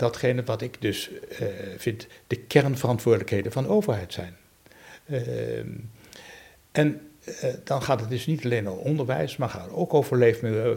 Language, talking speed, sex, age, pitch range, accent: Dutch, 155 wpm, male, 60-79, 105-130 Hz, Dutch